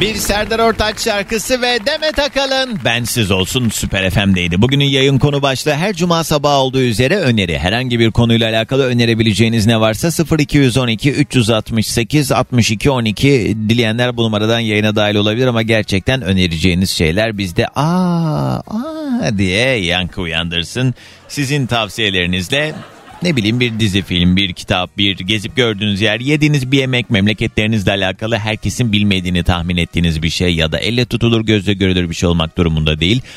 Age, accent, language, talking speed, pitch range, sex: 40-59, native, Turkish, 150 wpm, 100-135 Hz, male